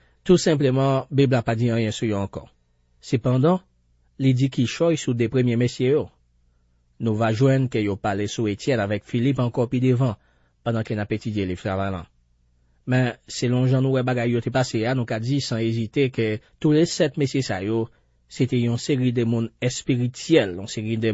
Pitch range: 100-130 Hz